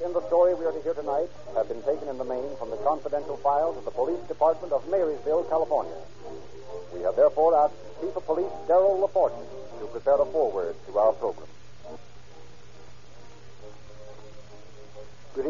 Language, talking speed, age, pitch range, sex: English, 165 wpm, 60-79, 125-170 Hz, male